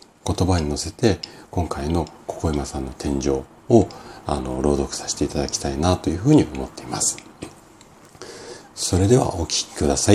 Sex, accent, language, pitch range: male, native, Japanese, 75-100 Hz